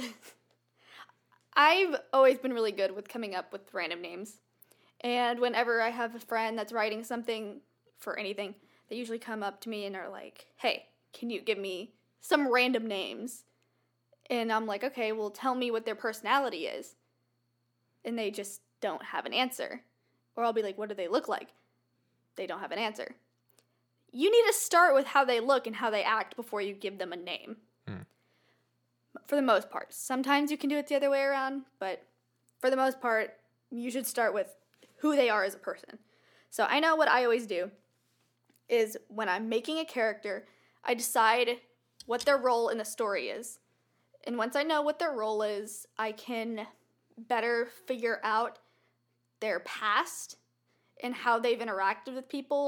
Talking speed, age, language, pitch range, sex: 180 wpm, 10-29, English, 210-265 Hz, female